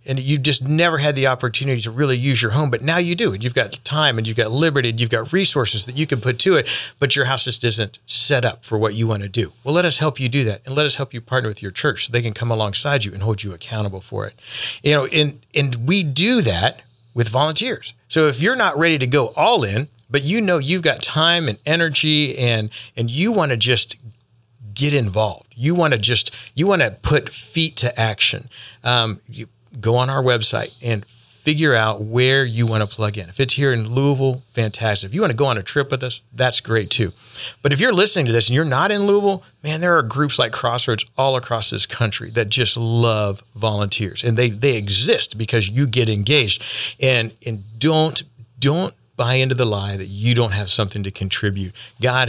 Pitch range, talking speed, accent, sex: 115-145 Hz, 235 wpm, American, male